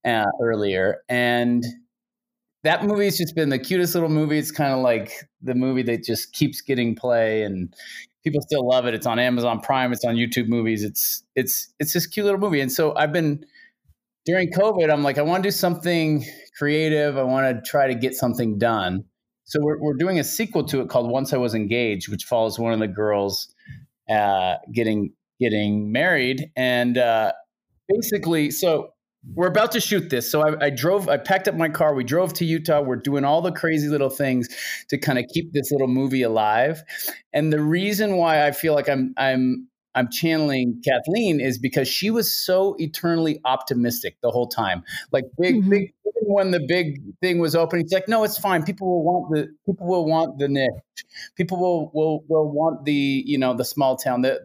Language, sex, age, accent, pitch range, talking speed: English, male, 30-49, American, 125-170 Hz, 200 wpm